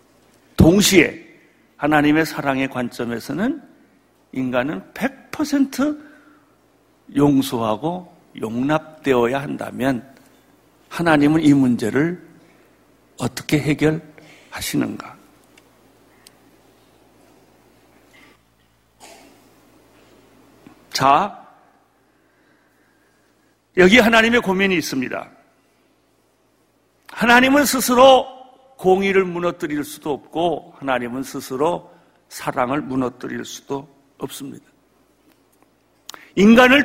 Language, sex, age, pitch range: Korean, male, 60-79, 140-230 Hz